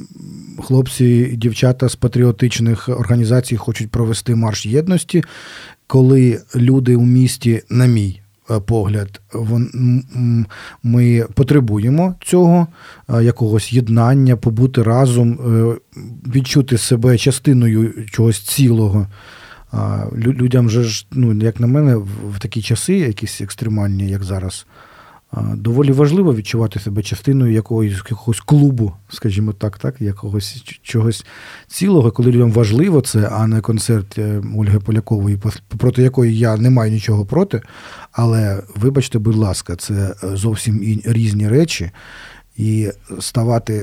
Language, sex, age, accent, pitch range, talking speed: Ukrainian, male, 40-59, native, 110-125 Hz, 110 wpm